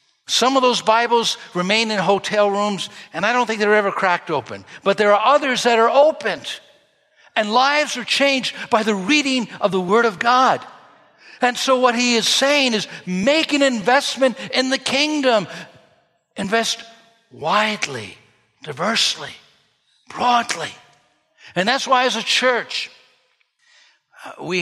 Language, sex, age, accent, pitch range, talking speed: English, male, 60-79, American, 180-255 Hz, 145 wpm